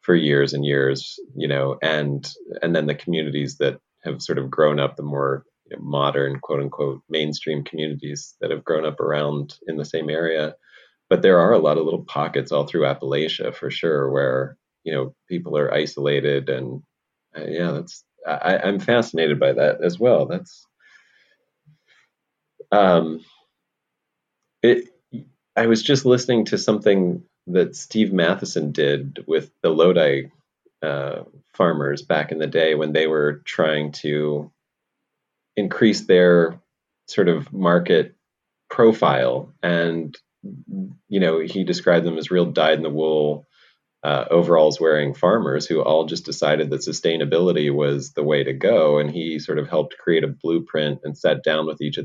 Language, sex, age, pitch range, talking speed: English, male, 30-49, 70-85 Hz, 160 wpm